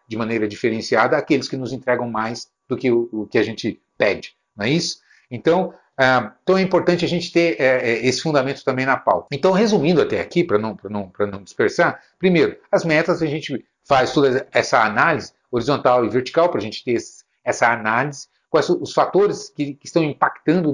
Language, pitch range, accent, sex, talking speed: Portuguese, 125-180 Hz, Brazilian, male, 185 wpm